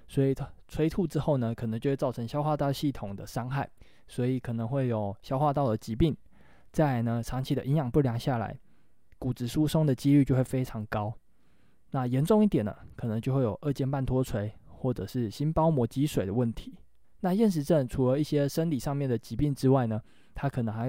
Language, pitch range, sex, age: Chinese, 120-145 Hz, male, 20-39